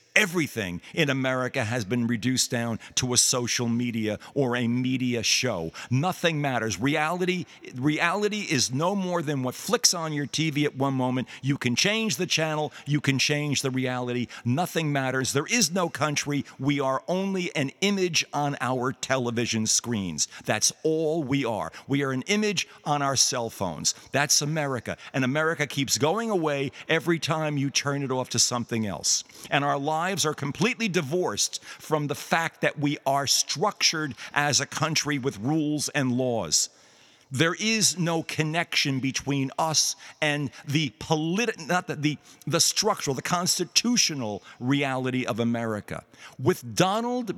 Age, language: 50-69, English